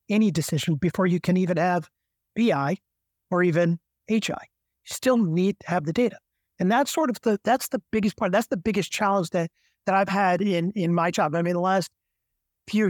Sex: male